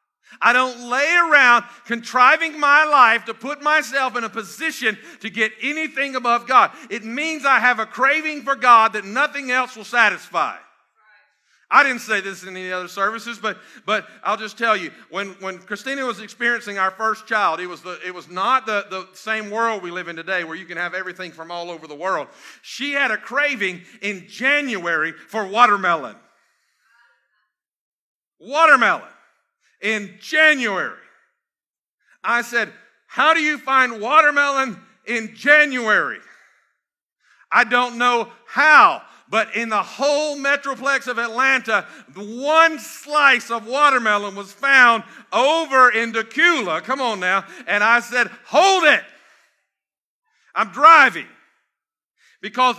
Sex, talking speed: male, 145 wpm